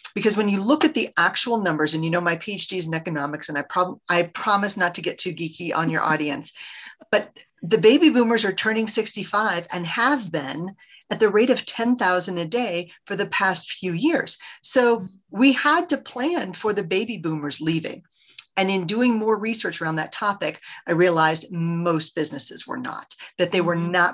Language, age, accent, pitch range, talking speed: English, 40-59, American, 160-220 Hz, 195 wpm